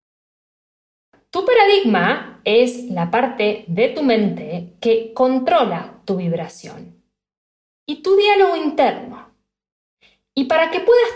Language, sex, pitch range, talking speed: Spanish, female, 195-285 Hz, 110 wpm